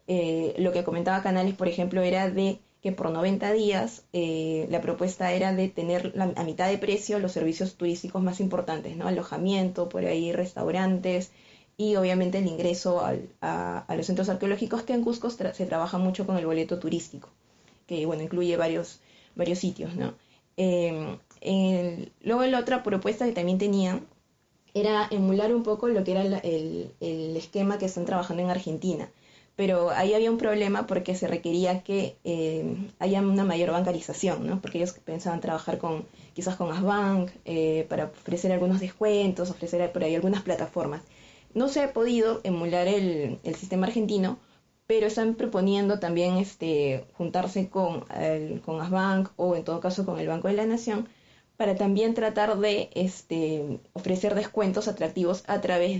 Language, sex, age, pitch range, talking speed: Spanish, female, 20-39, 170-200 Hz, 170 wpm